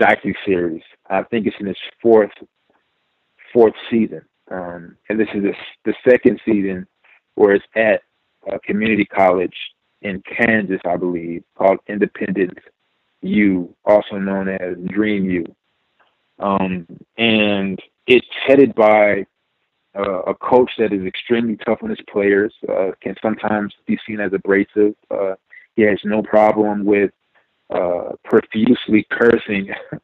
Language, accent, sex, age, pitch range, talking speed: English, American, male, 40-59, 100-115 Hz, 130 wpm